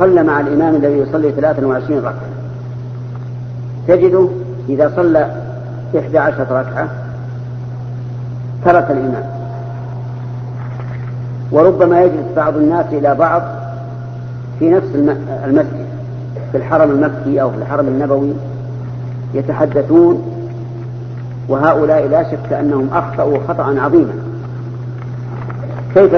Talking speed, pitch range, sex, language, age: 90 wpm, 125-150 Hz, female, Arabic, 50-69